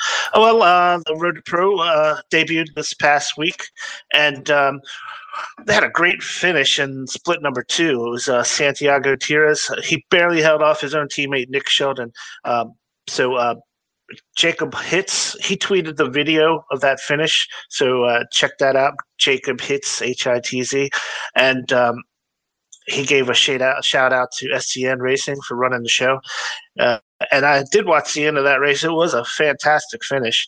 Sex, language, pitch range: male, English, 130-160 Hz